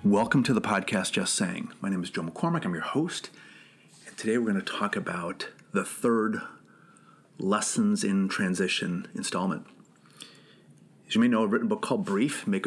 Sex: male